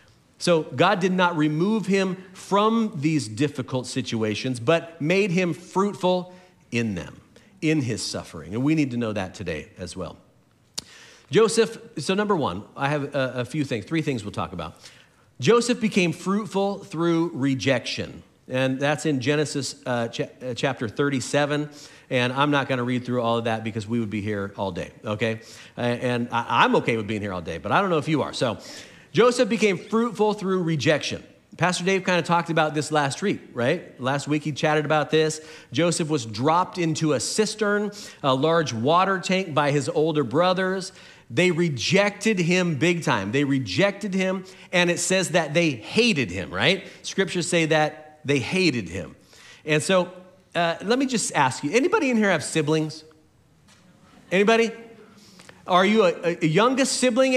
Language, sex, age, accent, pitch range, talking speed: English, male, 40-59, American, 130-190 Hz, 170 wpm